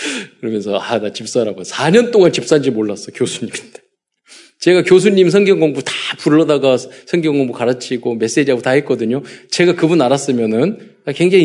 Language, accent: Korean, native